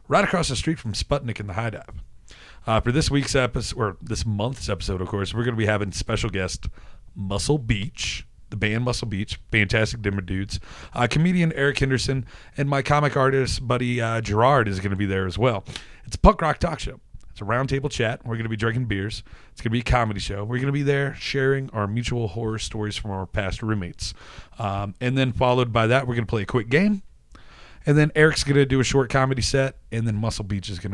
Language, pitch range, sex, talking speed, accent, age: English, 95-125 Hz, male, 235 wpm, American, 30-49